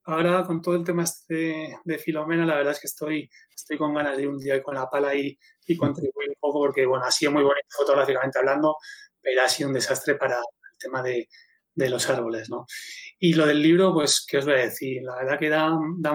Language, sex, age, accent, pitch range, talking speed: Spanish, male, 30-49, Spanish, 140-165 Hz, 240 wpm